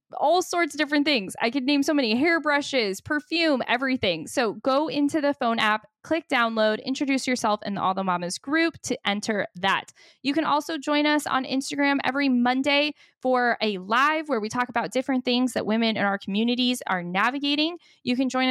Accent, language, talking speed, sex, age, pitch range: American, English, 195 wpm, female, 10-29, 210-270 Hz